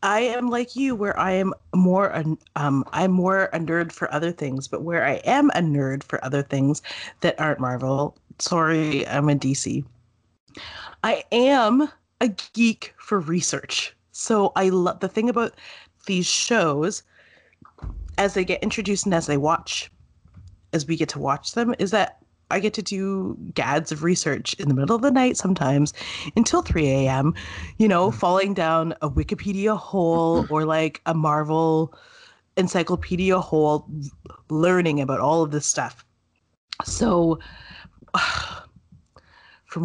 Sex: female